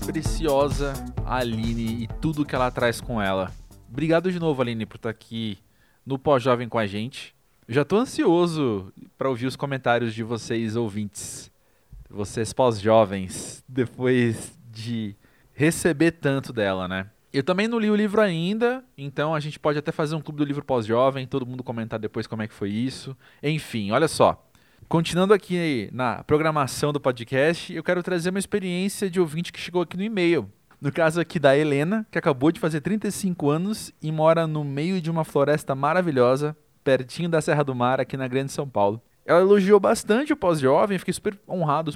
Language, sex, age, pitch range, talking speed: Portuguese, male, 20-39, 120-170 Hz, 180 wpm